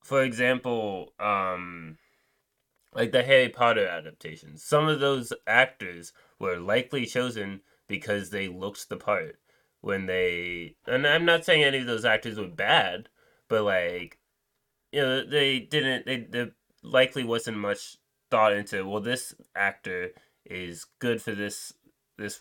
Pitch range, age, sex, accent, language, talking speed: 90-130 Hz, 20-39, male, American, English, 140 wpm